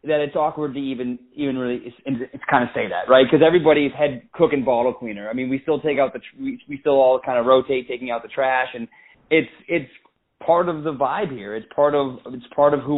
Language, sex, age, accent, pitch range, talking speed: English, male, 20-39, American, 125-150 Hz, 255 wpm